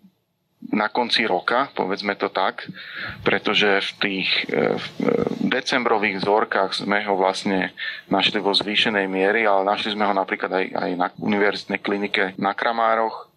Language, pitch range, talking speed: Slovak, 100-115 Hz, 140 wpm